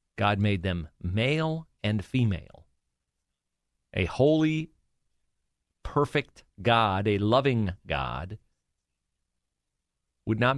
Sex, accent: male, American